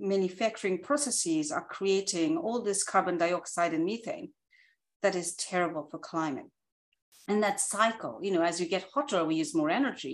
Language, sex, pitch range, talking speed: English, female, 180-275 Hz, 165 wpm